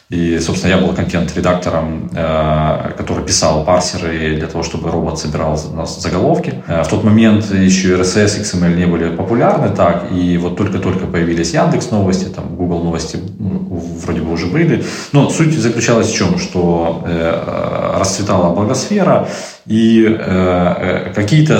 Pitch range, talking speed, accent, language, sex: 85-105 Hz, 140 wpm, native, Ukrainian, male